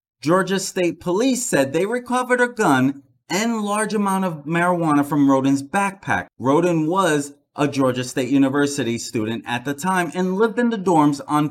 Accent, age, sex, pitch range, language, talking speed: American, 30-49, male, 140-190 Hz, English, 165 wpm